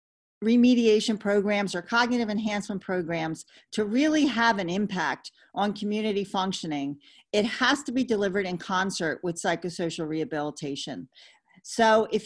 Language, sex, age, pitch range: English, female, 40-59, 175-225 Hz